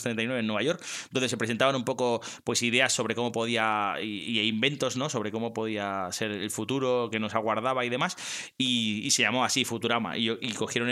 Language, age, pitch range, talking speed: Spanish, 20-39, 110-135 Hz, 205 wpm